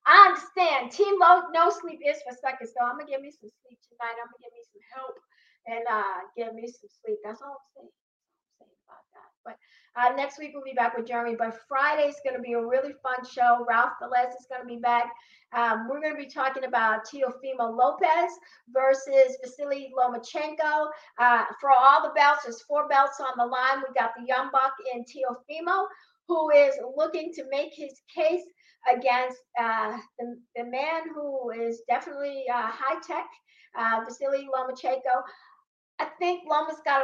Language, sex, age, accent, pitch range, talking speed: English, female, 50-69, American, 235-290 Hz, 185 wpm